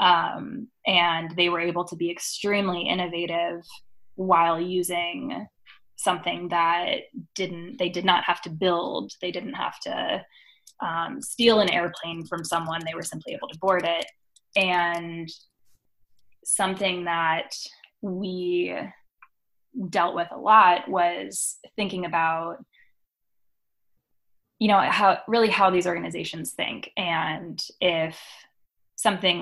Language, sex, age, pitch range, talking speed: English, female, 10-29, 165-195 Hz, 120 wpm